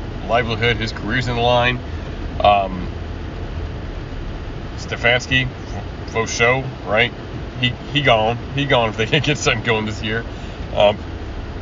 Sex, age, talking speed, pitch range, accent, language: male, 40-59, 130 wpm, 90-120 Hz, American, English